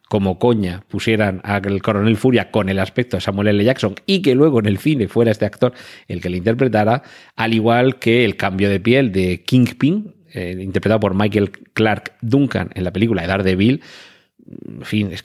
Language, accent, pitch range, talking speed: Spanish, Spanish, 95-130 Hz, 195 wpm